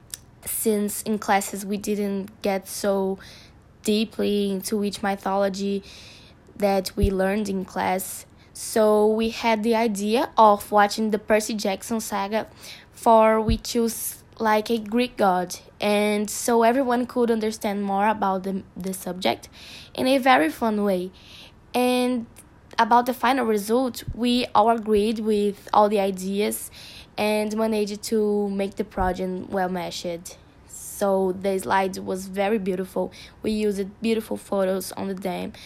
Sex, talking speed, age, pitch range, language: female, 140 wpm, 10-29, 195-225 Hz, English